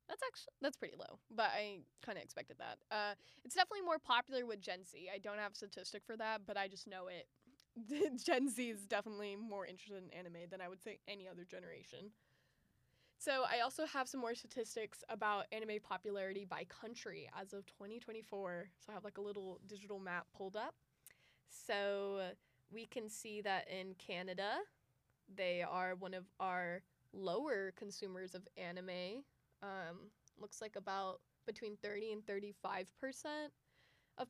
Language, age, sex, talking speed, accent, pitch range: English, 10-29, female, 170 wpm, American, 190-230 Hz